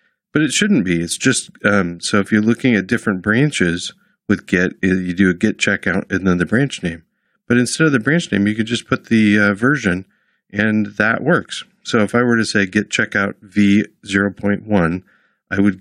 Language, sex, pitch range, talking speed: English, male, 90-110 Hz, 205 wpm